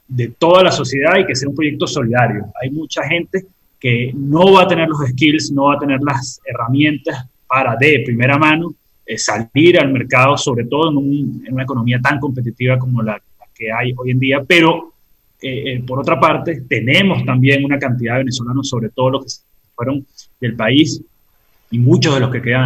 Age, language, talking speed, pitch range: 30-49, Spanish, 200 wpm, 125-150 Hz